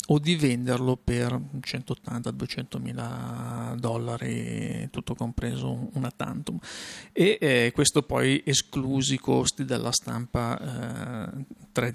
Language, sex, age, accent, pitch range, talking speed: Italian, male, 40-59, native, 120-140 Hz, 105 wpm